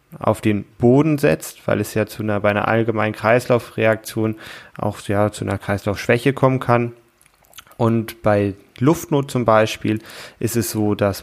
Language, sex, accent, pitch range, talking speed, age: German, male, German, 105-120 Hz, 155 wpm, 20-39